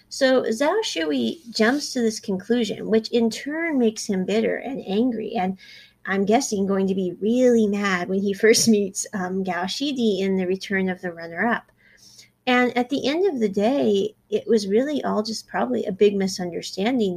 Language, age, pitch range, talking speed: English, 30-49, 195-240 Hz, 180 wpm